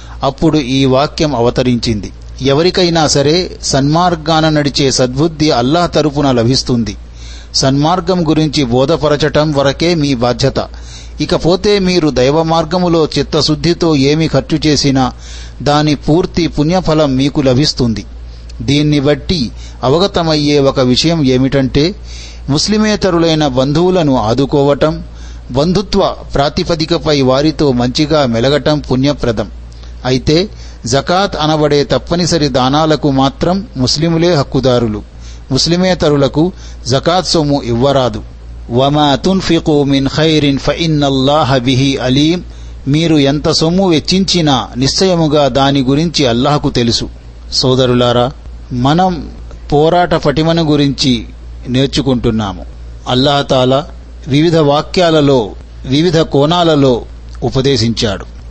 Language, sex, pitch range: Telugu, male, 125-160 Hz